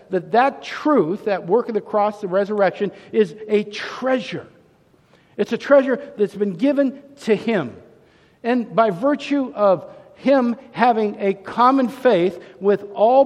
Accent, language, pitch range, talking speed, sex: American, English, 170-225 Hz, 145 wpm, male